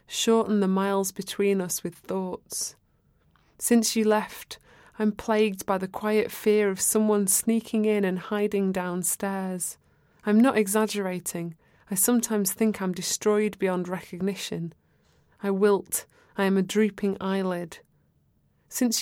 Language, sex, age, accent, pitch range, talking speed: English, female, 20-39, British, 190-215 Hz, 130 wpm